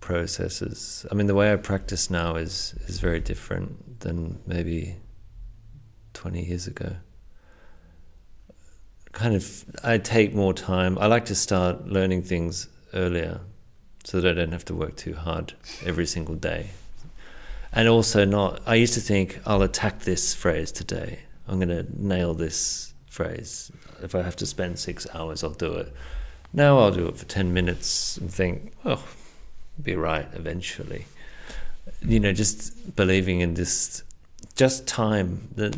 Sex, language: male, English